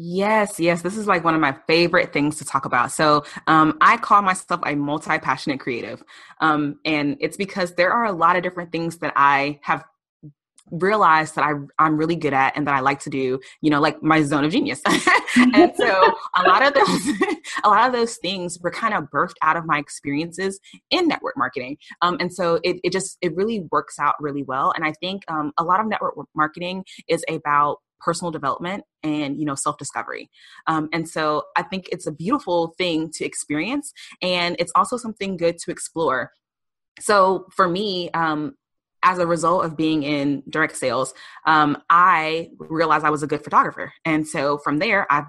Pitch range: 150-185 Hz